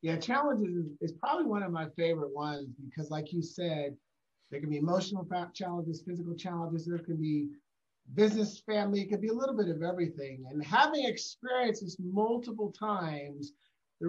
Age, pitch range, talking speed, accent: 40-59, 165-220 Hz, 175 wpm, American